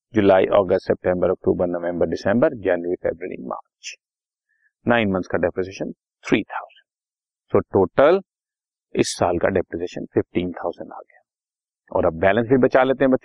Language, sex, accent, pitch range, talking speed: Hindi, male, native, 100-135 Hz, 135 wpm